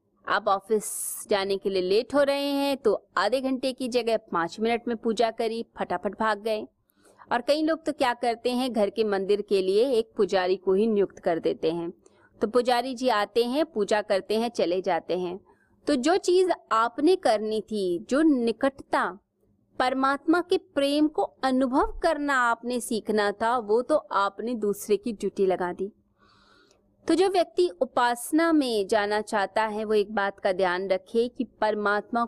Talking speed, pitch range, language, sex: 175 wpm, 200-280 Hz, Hindi, female